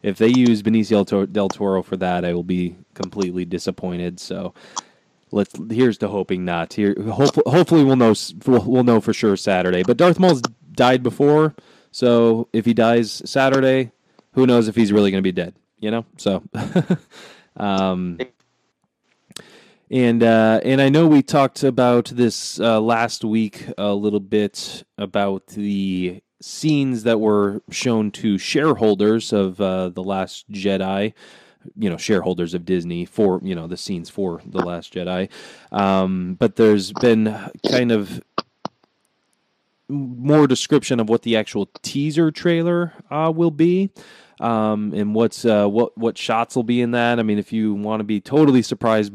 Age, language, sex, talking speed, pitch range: 20-39, English, male, 160 wpm, 100-125 Hz